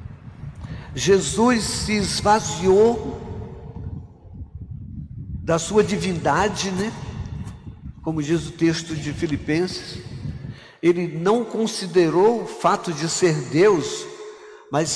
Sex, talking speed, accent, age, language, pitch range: male, 90 wpm, Brazilian, 60-79, Portuguese, 150-210 Hz